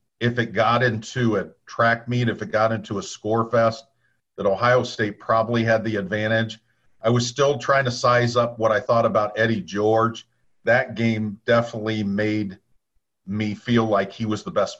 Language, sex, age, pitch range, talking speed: English, male, 50-69, 105-120 Hz, 185 wpm